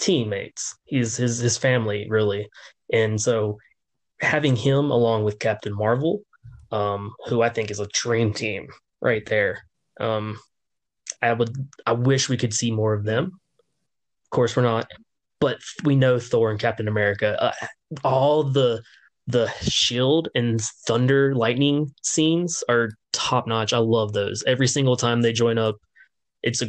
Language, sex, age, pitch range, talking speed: English, male, 20-39, 110-135 Hz, 155 wpm